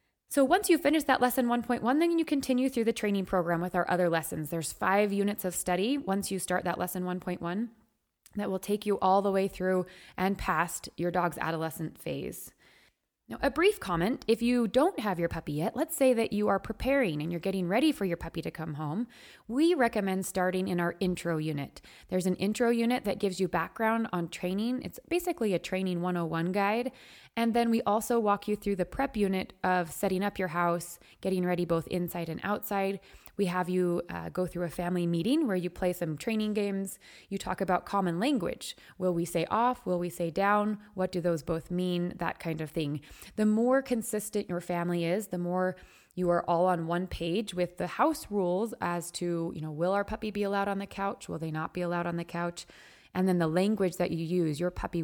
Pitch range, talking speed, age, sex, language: 175-215 Hz, 215 wpm, 20-39, female, English